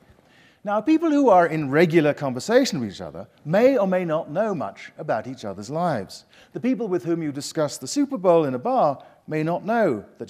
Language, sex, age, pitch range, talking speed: English, male, 50-69, 125-185 Hz, 210 wpm